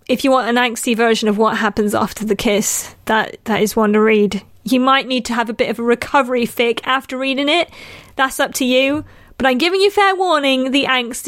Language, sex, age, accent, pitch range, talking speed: English, female, 30-49, British, 230-280 Hz, 235 wpm